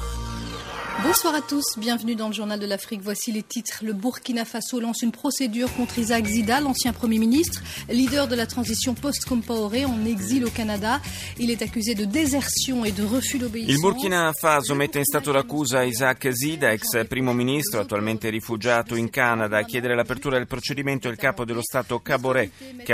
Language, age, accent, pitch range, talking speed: Italian, 30-49, native, 115-195 Hz, 180 wpm